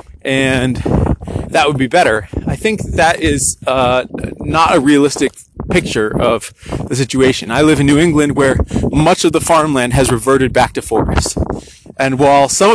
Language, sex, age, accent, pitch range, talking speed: English, male, 30-49, American, 125-155 Hz, 165 wpm